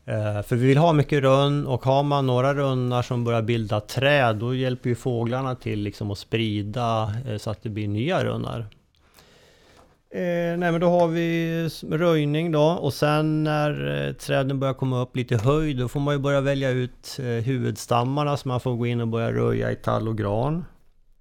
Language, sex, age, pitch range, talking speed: Swedish, male, 30-49, 115-145 Hz, 185 wpm